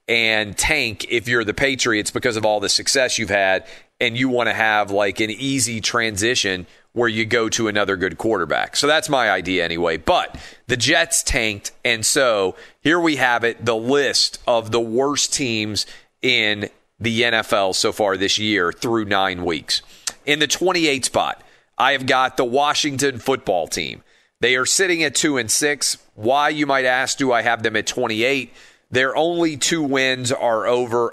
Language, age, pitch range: English, 40-59, 110-135 Hz